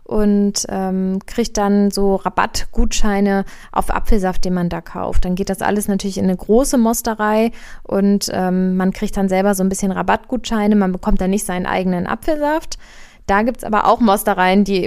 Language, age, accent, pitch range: German, 20-39, German, 195-230 Hz